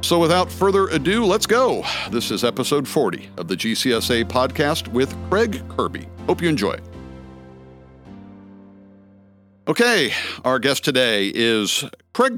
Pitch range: 95-125 Hz